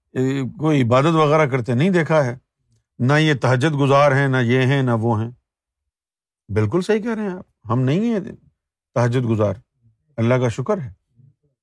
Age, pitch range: 50-69, 125-190 Hz